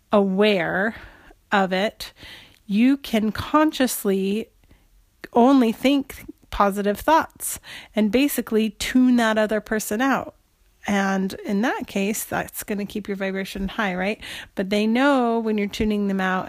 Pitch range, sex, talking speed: 195-225 Hz, female, 135 wpm